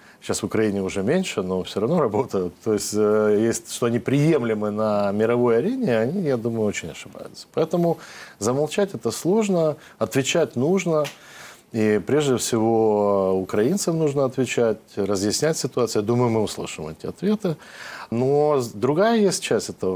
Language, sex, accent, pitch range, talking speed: Russian, male, native, 105-135 Hz, 145 wpm